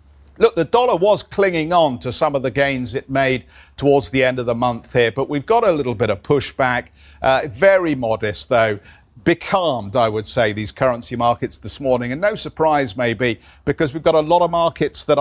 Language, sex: English, male